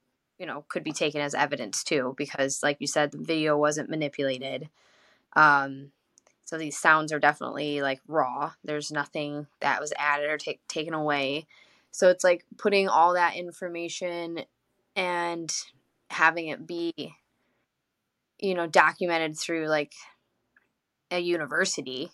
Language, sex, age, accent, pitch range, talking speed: English, female, 10-29, American, 150-180 Hz, 135 wpm